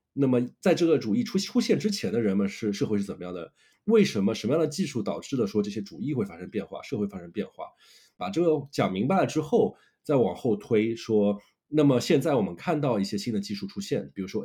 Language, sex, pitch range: Chinese, male, 105-165 Hz